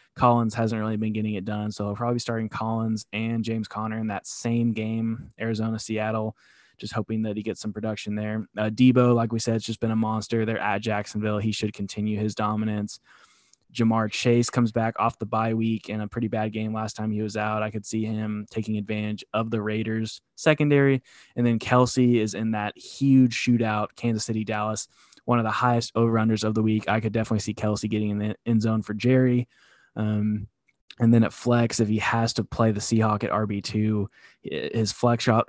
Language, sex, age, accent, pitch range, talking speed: English, male, 20-39, American, 105-115 Hz, 210 wpm